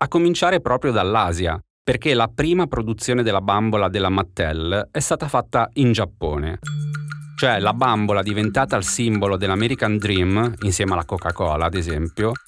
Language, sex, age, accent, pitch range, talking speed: Italian, male, 30-49, native, 100-130 Hz, 145 wpm